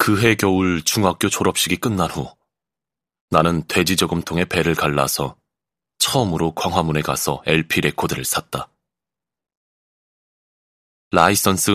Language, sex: Korean, male